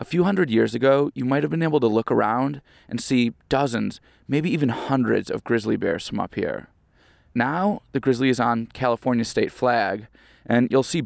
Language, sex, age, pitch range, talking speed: English, male, 20-39, 110-135 Hz, 195 wpm